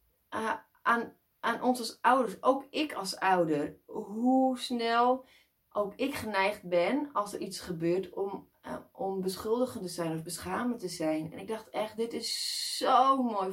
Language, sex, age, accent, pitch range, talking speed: Dutch, female, 20-39, Dutch, 180-245 Hz, 170 wpm